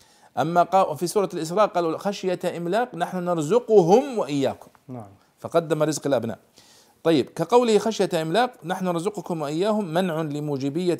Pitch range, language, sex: 135-185 Hz, Arabic, male